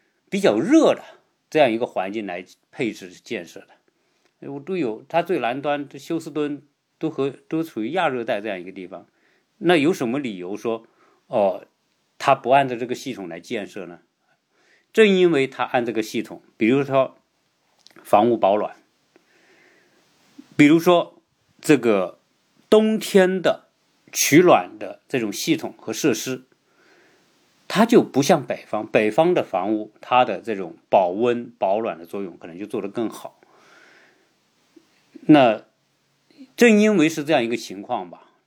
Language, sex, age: Chinese, male, 50-69